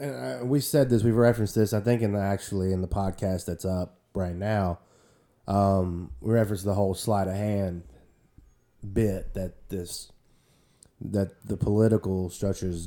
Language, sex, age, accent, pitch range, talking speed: English, male, 20-39, American, 95-115 Hz, 165 wpm